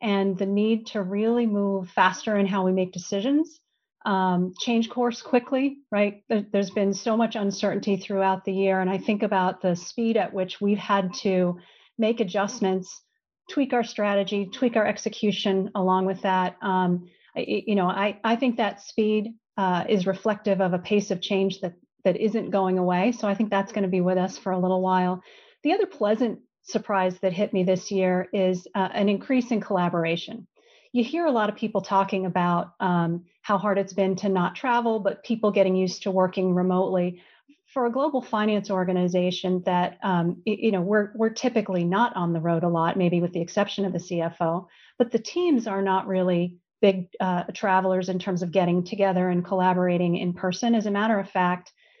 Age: 40-59